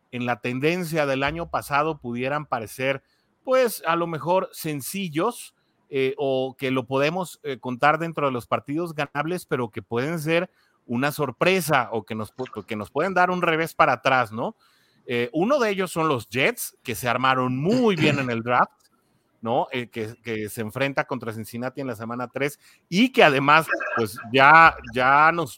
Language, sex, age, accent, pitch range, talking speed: Spanish, male, 30-49, Mexican, 125-165 Hz, 185 wpm